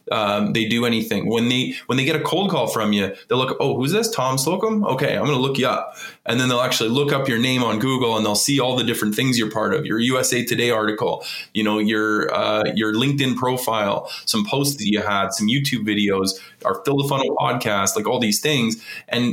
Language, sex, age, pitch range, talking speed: English, male, 20-39, 110-130 Hz, 235 wpm